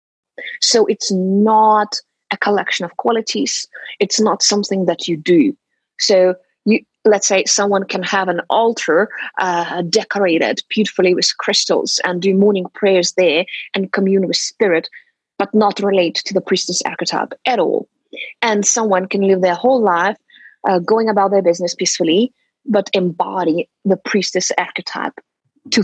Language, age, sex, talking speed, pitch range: English, 30-49, female, 145 wpm, 180-215 Hz